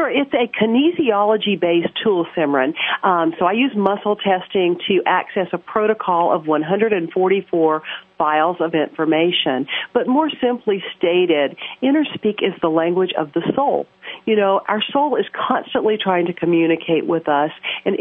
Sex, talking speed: female, 150 wpm